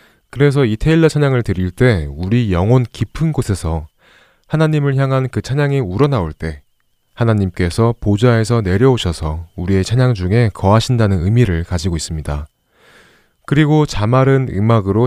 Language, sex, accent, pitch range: Korean, male, native, 90-130 Hz